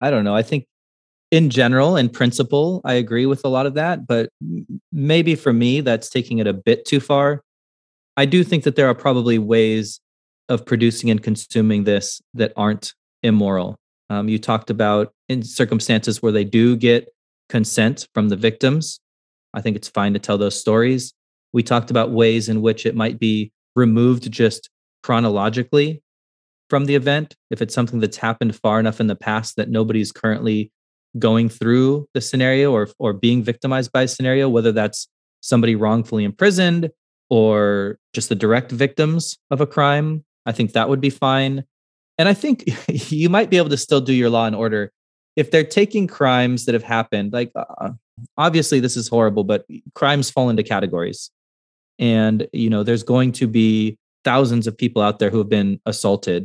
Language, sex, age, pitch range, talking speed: English, male, 20-39, 110-135 Hz, 180 wpm